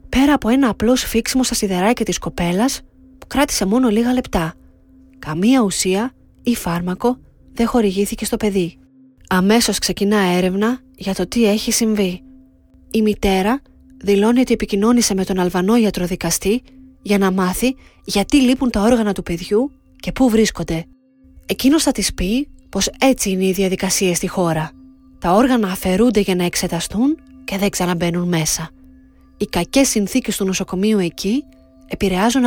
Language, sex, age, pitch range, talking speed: Greek, female, 20-39, 180-245 Hz, 145 wpm